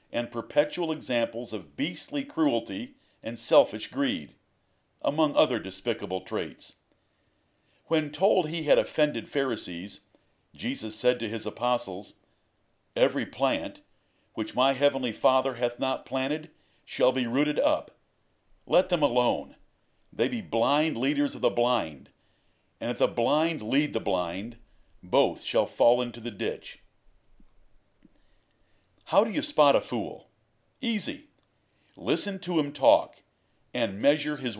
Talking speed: 130 wpm